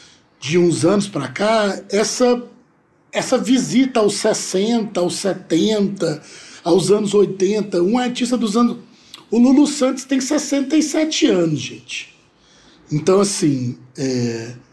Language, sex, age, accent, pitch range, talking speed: Portuguese, male, 60-79, Brazilian, 180-240 Hz, 120 wpm